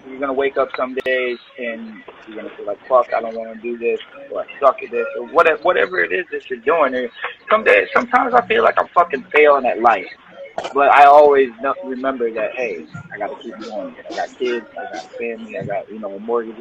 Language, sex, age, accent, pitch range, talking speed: English, male, 20-39, American, 115-140 Hz, 235 wpm